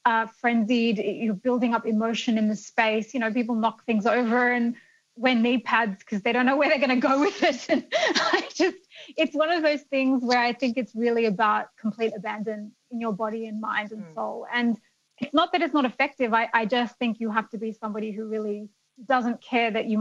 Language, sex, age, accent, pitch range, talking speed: English, female, 20-39, Australian, 215-250 Hz, 225 wpm